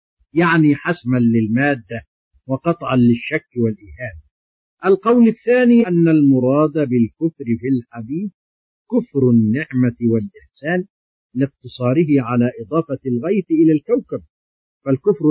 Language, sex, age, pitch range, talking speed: Arabic, male, 50-69, 120-165 Hz, 90 wpm